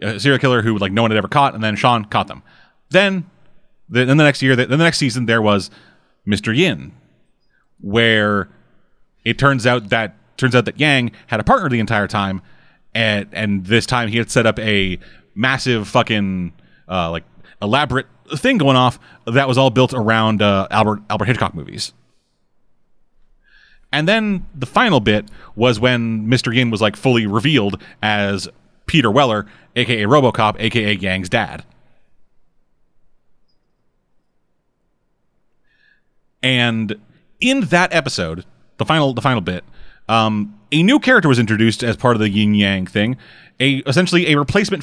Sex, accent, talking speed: male, American, 155 wpm